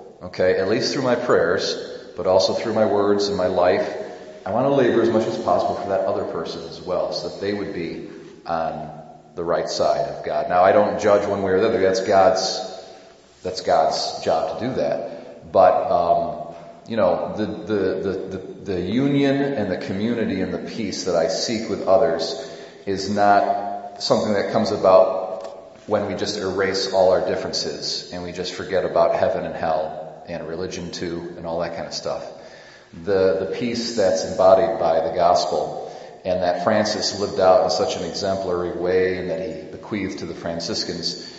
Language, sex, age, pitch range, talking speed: English, male, 40-59, 90-110 Hz, 190 wpm